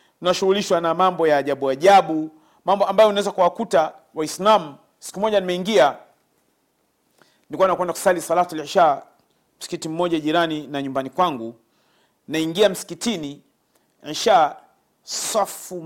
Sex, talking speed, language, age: male, 110 wpm, Swahili, 40-59